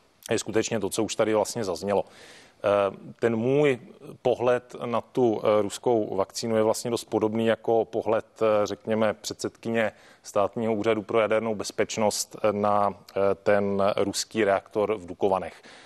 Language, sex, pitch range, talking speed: Czech, male, 100-110 Hz, 130 wpm